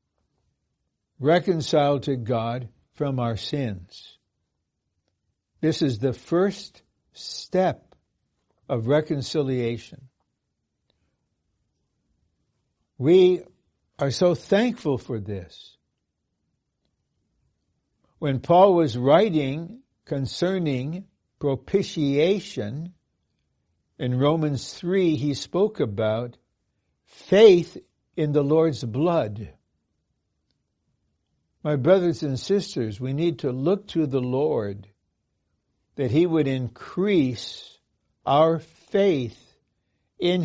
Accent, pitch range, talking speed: American, 120-165 Hz, 80 wpm